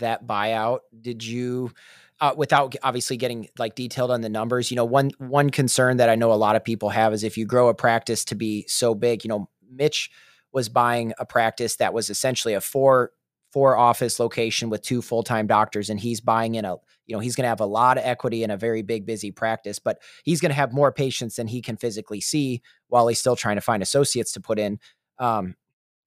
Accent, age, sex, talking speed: American, 30-49, male, 225 wpm